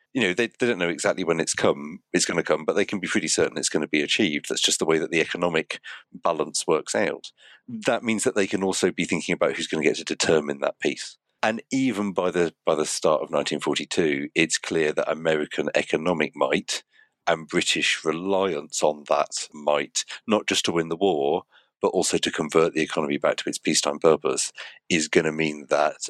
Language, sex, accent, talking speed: English, male, British, 220 wpm